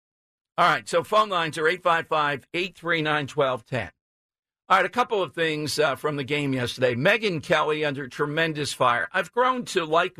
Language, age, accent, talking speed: English, 50-69, American, 160 wpm